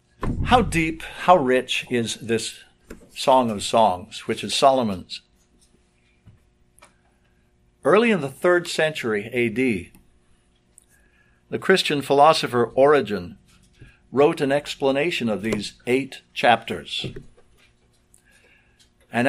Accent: American